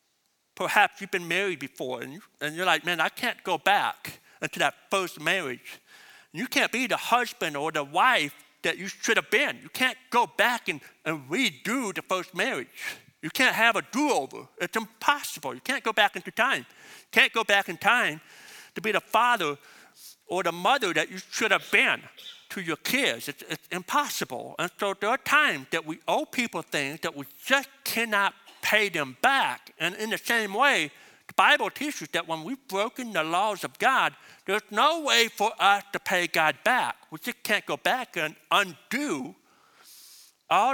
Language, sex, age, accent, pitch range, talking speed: English, male, 50-69, American, 170-250 Hz, 185 wpm